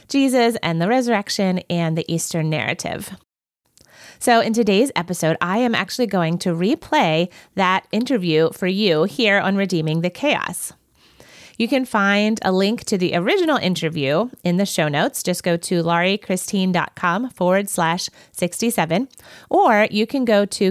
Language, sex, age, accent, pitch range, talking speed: English, female, 30-49, American, 170-210 Hz, 150 wpm